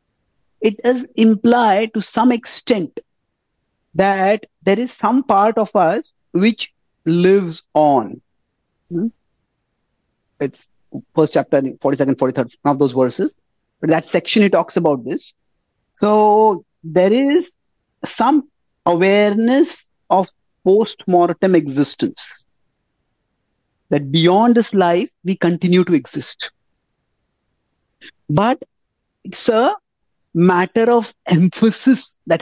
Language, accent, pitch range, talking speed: English, Indian, 165-230 Hz, 105 wpm